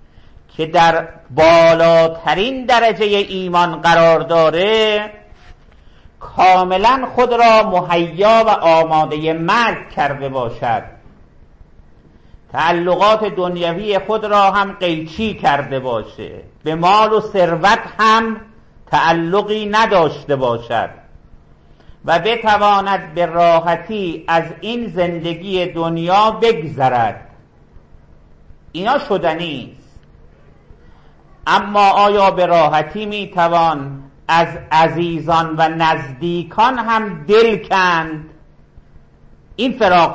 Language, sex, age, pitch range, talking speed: English, male, 50-69, 145-200 Hz, 85 wpm